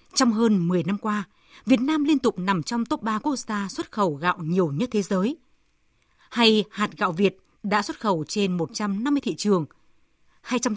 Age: 20-39